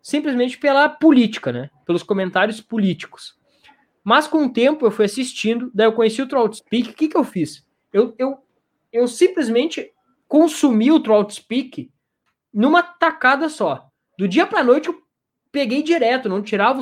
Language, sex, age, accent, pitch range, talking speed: Portuguese, male, 20-39, Brazilian, 185-255 Hz, 165 wpm